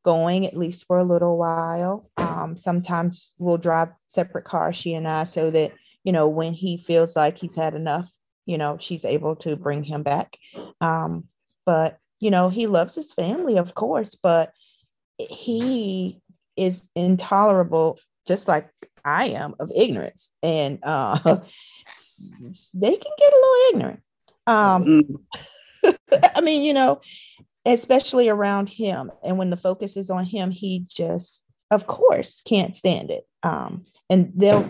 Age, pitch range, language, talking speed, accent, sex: 40-59, 170-205 Hz, English, 150 wpm, American, female